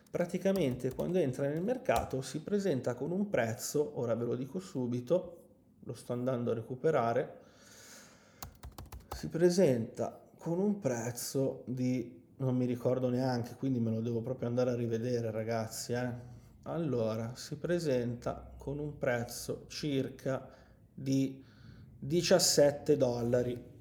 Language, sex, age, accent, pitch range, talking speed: Italian, male, 20-39, native, 125-170 Hz, 125 wpm